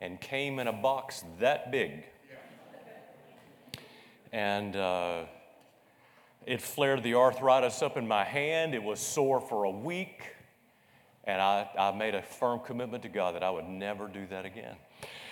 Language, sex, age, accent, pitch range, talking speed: English, male, 40-59, American, 115-165 Hz, 155 wpm